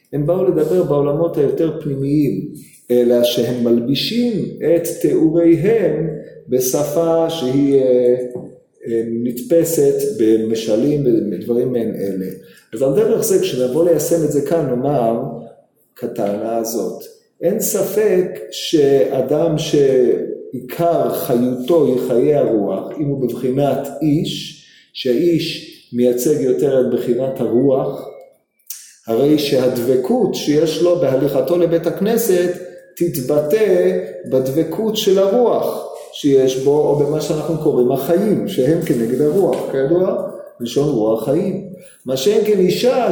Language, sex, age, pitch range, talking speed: Hebrew, male, 50-69, 130-185 Hz, 110 wpm